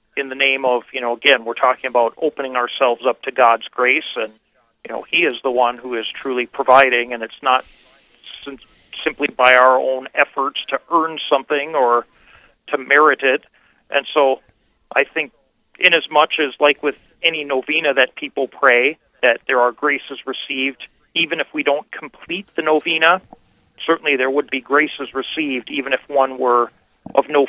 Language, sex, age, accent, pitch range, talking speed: English, male, 40-59, American, 125-145 Hz, 180 wpm